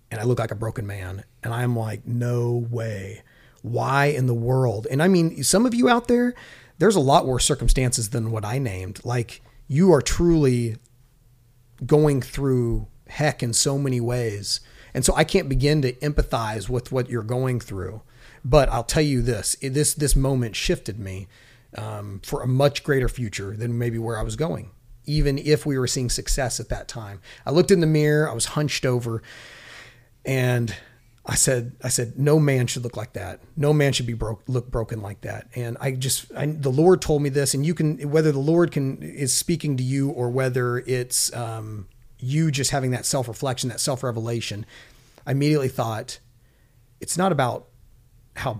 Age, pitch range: 30-49, 115-140 Hz